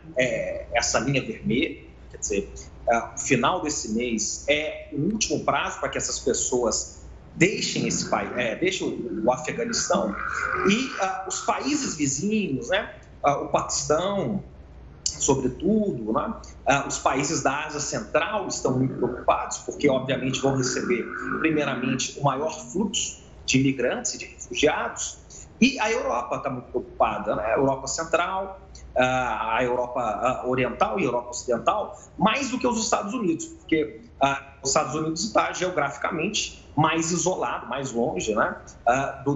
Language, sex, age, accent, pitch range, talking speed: Portuguese, male, 40-59, Brazilian, 130-190 Hz, 140 wpm